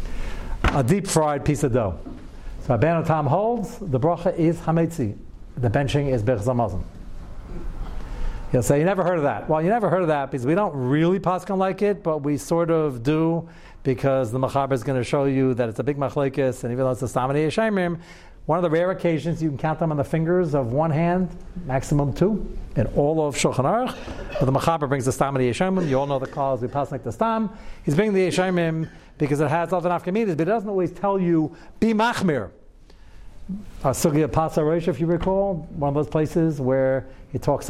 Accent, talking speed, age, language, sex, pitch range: American, 210 wpm, 60-79, English, male, 135-175 Hz